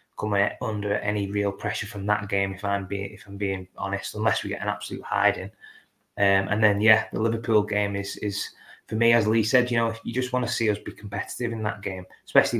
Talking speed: 235 wpm